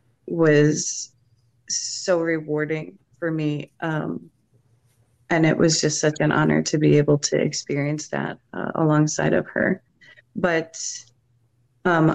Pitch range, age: 130-165 Hz, 30-49